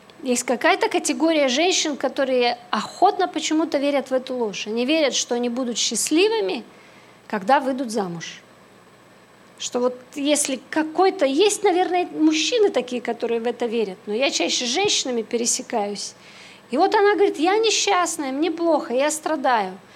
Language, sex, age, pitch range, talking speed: Russian, female, 40-59, 240-340 Hz, 145 wpm